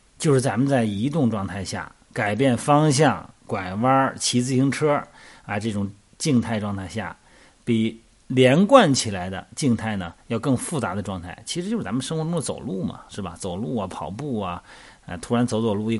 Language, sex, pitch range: Chinese, male, 100-130 Hz